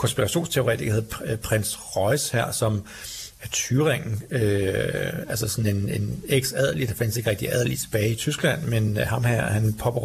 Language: Danish